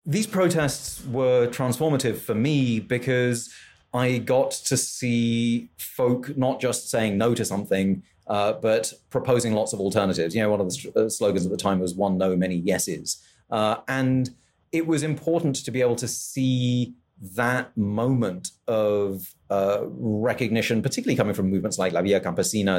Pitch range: 105-135 Hz